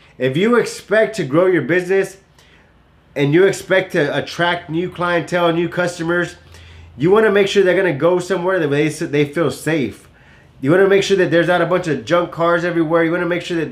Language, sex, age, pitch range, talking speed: English, male, 20-39, 145-185 Hz, 220 wpm